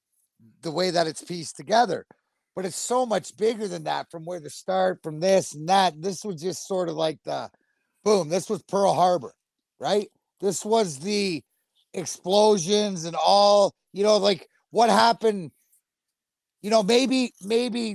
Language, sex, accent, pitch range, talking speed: English, male, American, 180-215 Hz, 165 wpm